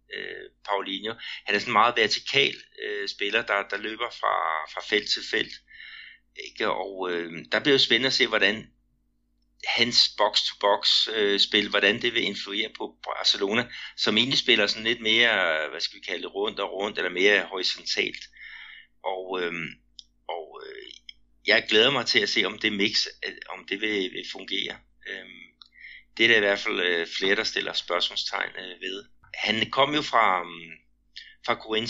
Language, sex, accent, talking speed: Danish, male, native, 175 wpm